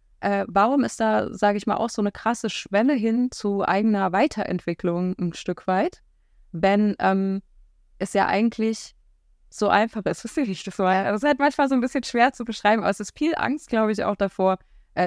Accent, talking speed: German, 185 wpm